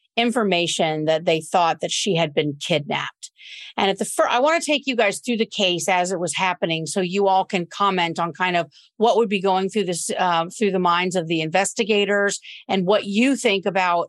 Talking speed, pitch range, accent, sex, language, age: 220 wpm, 170-215 Hz, American, female, English, 50-69